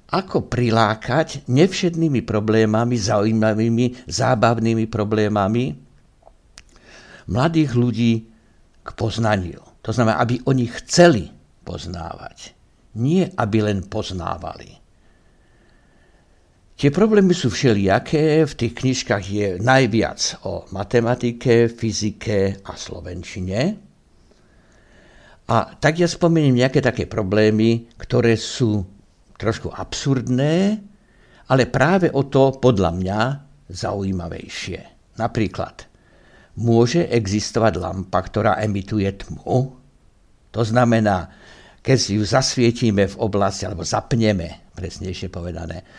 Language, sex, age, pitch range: Slovak, male, 60-79, 100-130 Hz